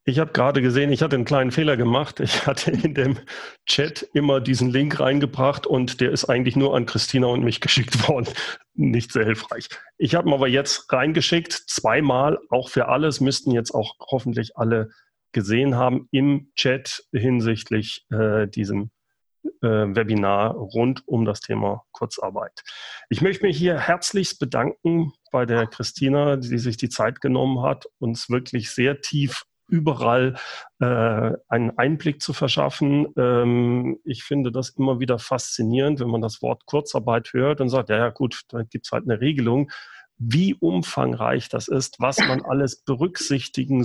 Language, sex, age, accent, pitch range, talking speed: German, male, 40-59, German, 115-145 Hz, 160 wpm